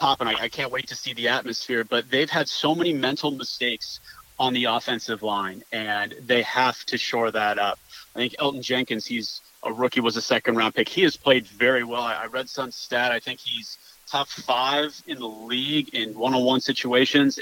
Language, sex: English, male